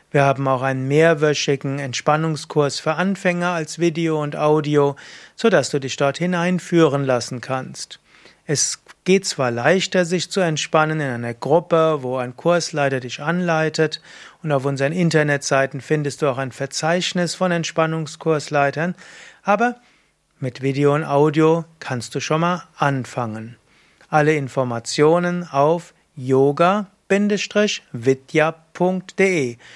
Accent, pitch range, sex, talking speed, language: German, 140-170 Hz, male, 120 wpm, German